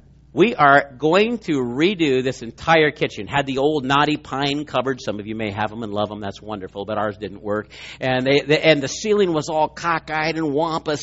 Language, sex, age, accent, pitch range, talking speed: English, male, 50-69, American, 135-165 Hz, 220 wpm